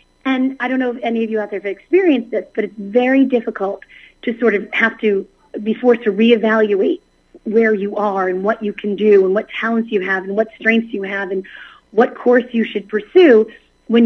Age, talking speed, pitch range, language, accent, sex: 40-59, 220 wpm, 205-250 Hz, English, American, female